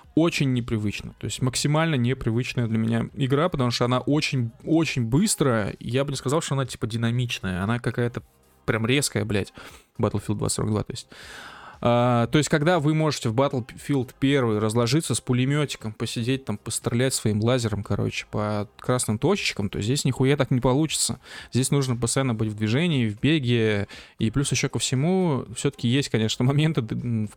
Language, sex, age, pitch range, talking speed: Russian, male, 20-39, 115-145 Hz, 165 wpm